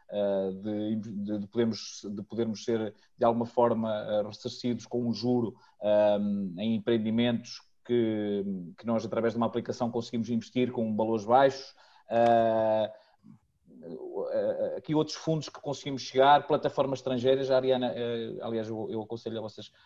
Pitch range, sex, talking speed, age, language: 105-120 Hz, male, 120 wpm, 20-39, Portuguese